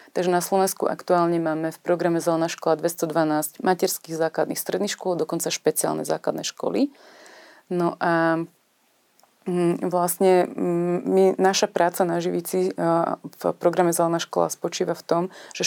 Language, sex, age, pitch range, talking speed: Slovak, female, 30-49, 165-180 Hz, 130 wpm